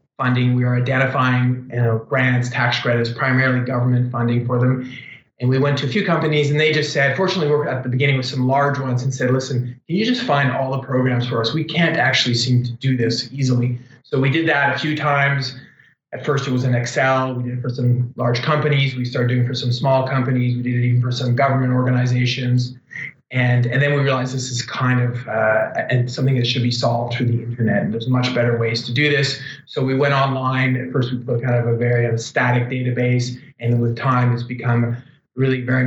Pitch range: 120-140 Hz